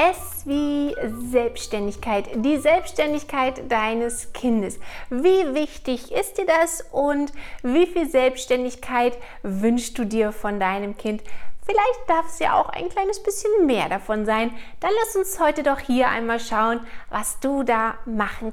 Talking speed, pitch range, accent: 145 wpm, 225-315 Hz, German